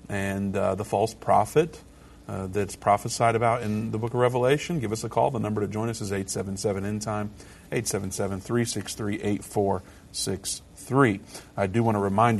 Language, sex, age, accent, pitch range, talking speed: English, male, 40-59, American, 100-115 Hz, 150 wpm